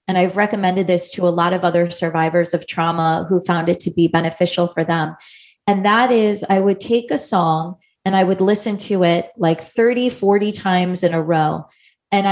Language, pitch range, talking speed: English, 175-205 Hz, 205 wpm